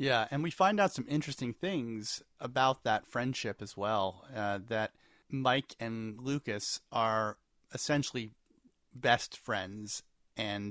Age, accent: 30-49, American